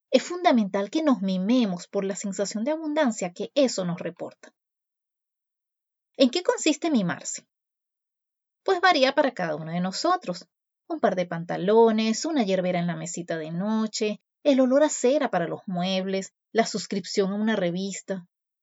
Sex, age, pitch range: female, 30-49, 185-260 Hz